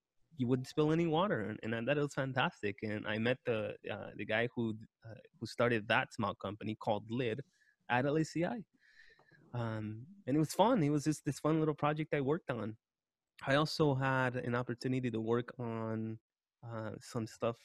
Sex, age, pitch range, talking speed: male, 20-39, 115-145 Hz, 185 wpm